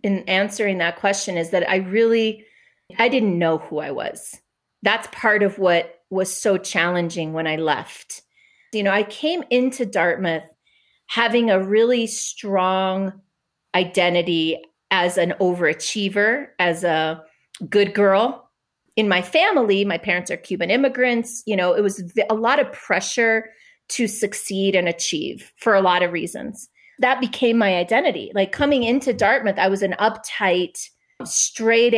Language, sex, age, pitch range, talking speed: English, female, 30-49, 180-230 Hz, 150 wpm